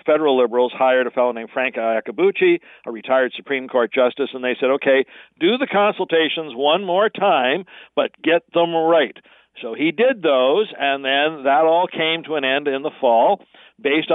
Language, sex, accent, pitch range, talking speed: English, male, American, 135-180 Hz, 180 wpm